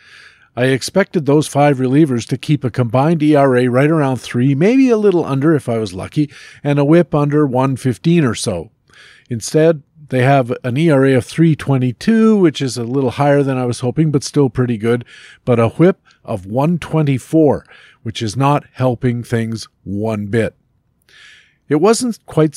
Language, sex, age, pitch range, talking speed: English, male, 50-69, 120-155 Hz, 175 wpm